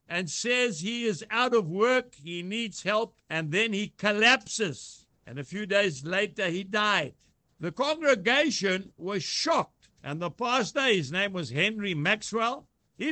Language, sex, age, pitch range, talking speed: English, male, 60-79, 170-230 Hz, 155 wpm